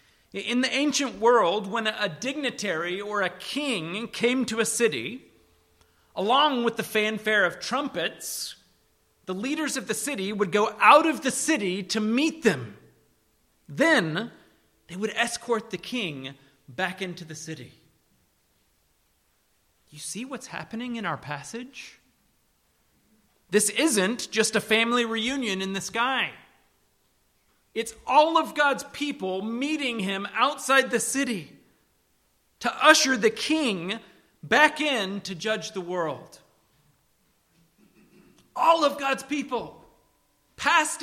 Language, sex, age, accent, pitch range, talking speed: English, male, 40-59, American, 175-255 Hz, 125 wpm